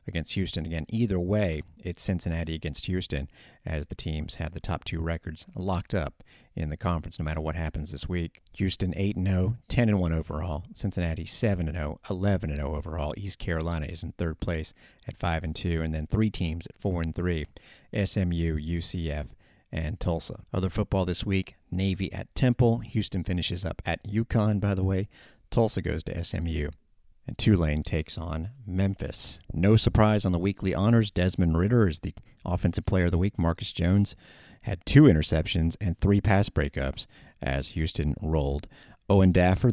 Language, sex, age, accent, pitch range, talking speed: English, male, 40-59, American, 80-100 Hz, 180 wpm